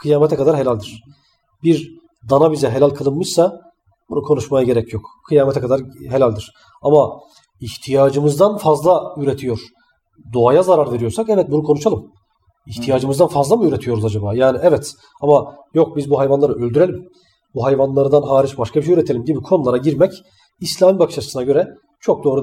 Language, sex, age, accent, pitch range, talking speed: Turkish, male, 40-59, native, 120-150 Hz, 145 wpm